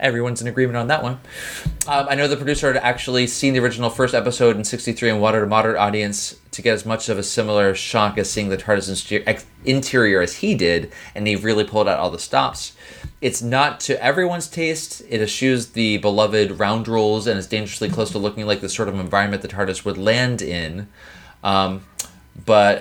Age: 20-39